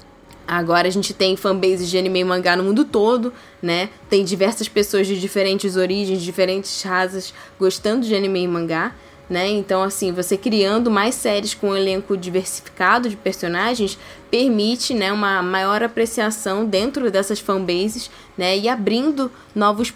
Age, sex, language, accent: 10-29, female, Portuguese, Brazilian